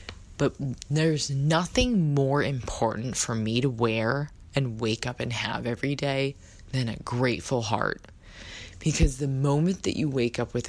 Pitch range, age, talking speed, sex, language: 110-140 Hz, 20-39, 155 wpm, female, English